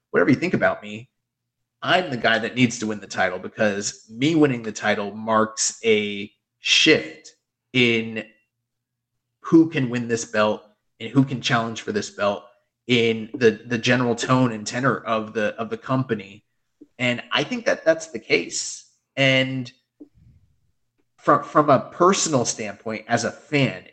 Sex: male